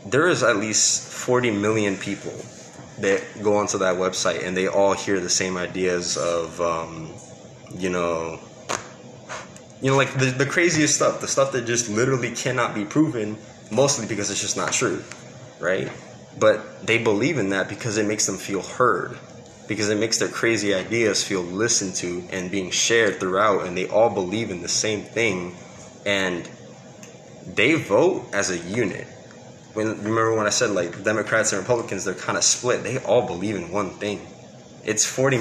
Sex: male